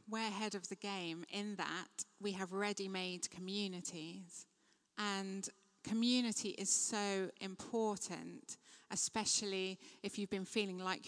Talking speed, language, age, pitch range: 120 wpm, English, 30-49, 190-230 Hz